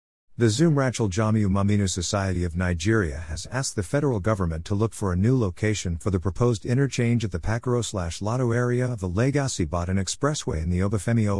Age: 50-69